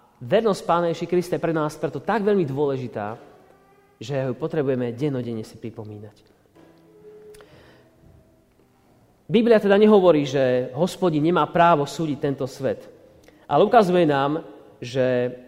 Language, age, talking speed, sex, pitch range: Slovak, 30-49, 115 wpm, male, 140-190 Hz